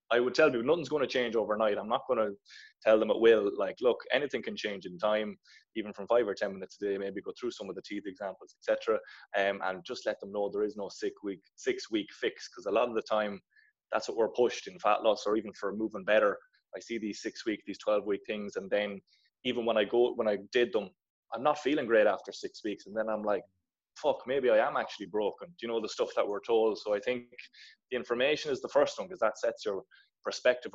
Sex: male